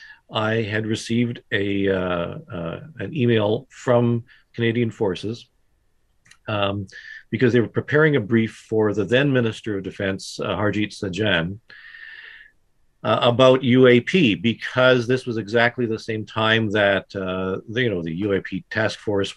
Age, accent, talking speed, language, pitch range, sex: 50-69, American, 145 wpm, English, 95-120 Hz, male